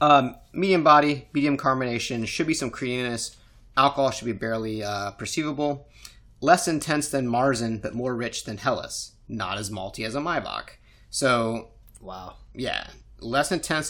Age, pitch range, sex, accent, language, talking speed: 30-49, 105-130 Hz, male, American, English, 155 wpm